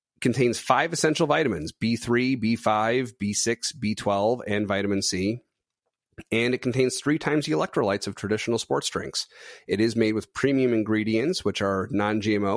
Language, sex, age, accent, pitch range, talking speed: English, male, 30-49, American, 100-130 Hz, 150 wpm